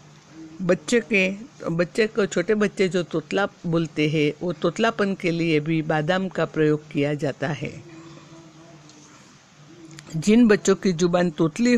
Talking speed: 130 wpm